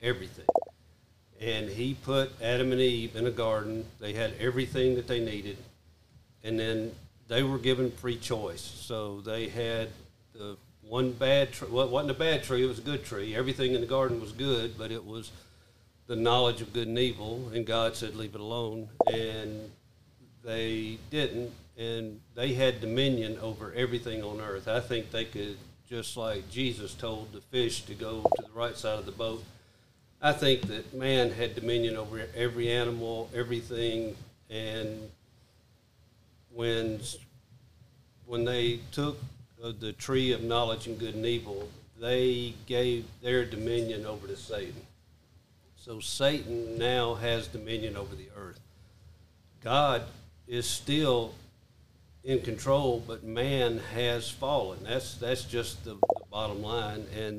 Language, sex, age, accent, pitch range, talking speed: English, male, 50-69, American, 110-125 Hz, 150 wpm